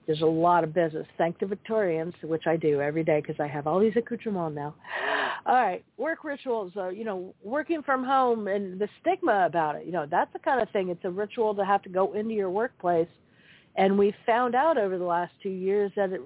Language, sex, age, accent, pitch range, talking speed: English, female, 50-69, American, 180-240 Hz, 230 wpm